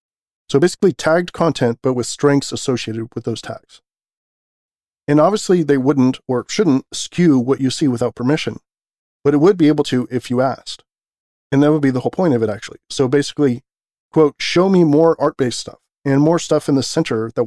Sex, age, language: male, 40-59, English